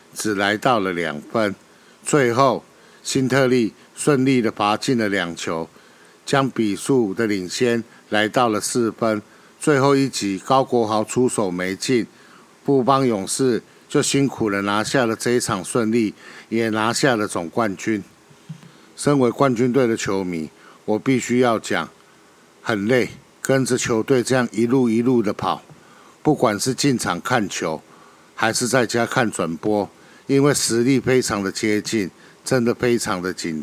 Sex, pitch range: male, 105-130 Hz